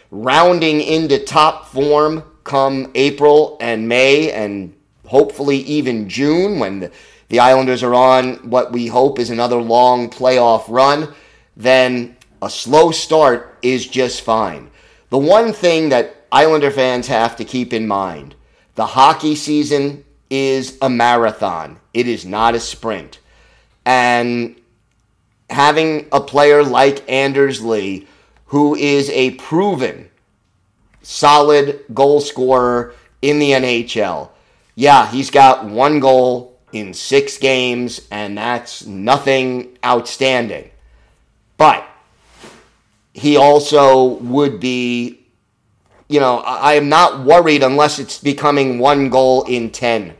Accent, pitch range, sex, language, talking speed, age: American, 120-145 Hz, male, English, 120 wpm, 30-49